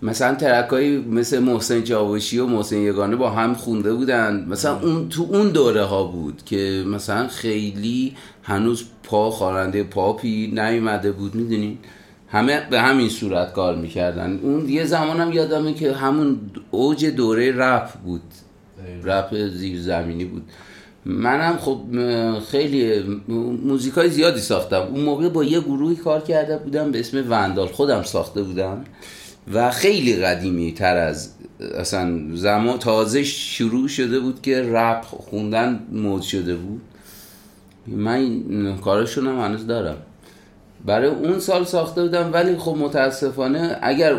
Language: Persian